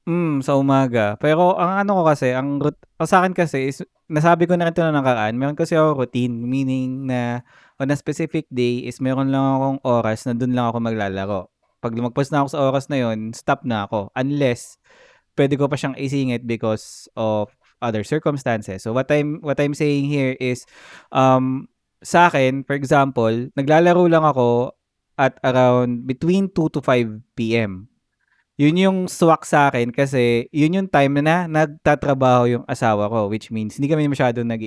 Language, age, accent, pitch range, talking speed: Filipino, 20-39, native, 115-145 Hz, 185 wpm